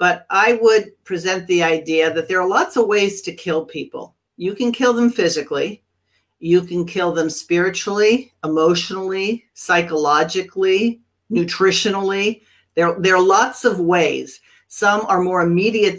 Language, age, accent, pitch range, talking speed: English, 50-69, American, 165-205 Hz, 145 wpm